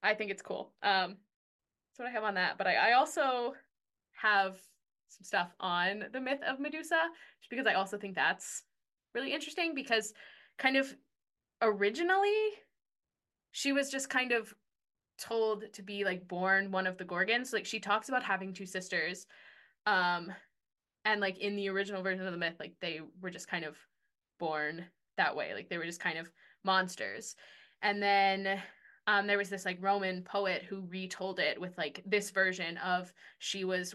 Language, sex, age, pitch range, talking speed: English, female, 10-29, 185-230 Hz, 175 wpm